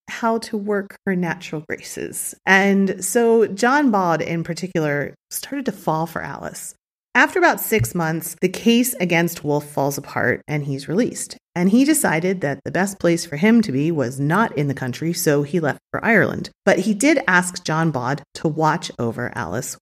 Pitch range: 140-195 Hz